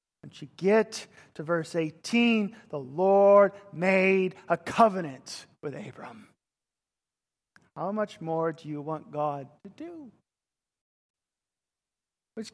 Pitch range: 165-210 Hz